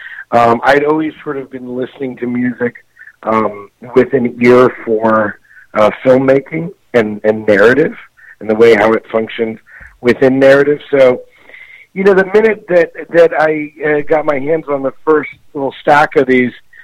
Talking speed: 165 wpm